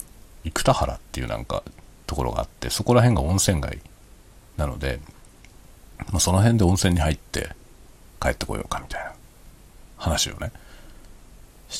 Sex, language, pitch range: male, Japanese, 70-100 Hz